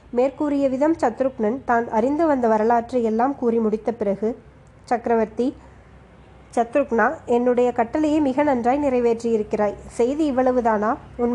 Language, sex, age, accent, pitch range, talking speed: Tamil, female, 20-39, native, 225-265 Hz, 105 wpm